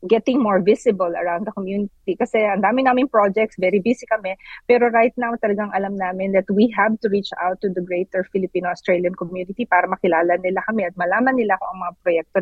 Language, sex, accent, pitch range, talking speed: Filipino, female, native, 190-235 Hz, 205 wpm